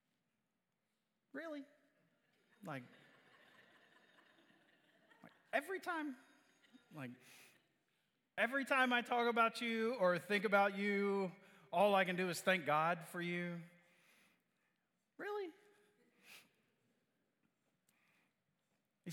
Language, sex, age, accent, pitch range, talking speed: English, male, 30-49, American, 130-195 Hz, 85 wpm